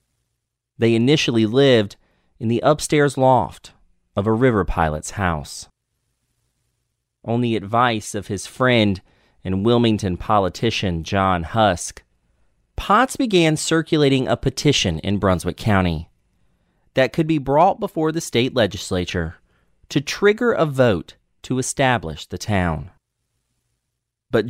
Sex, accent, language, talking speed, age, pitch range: male, American, English, 120 wpm, 30-49, 90-130 Hz